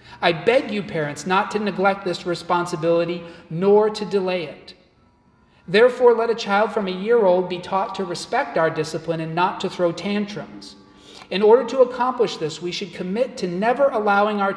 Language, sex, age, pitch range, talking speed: English, male, 40-59, 165-210 Hz, 180 wpm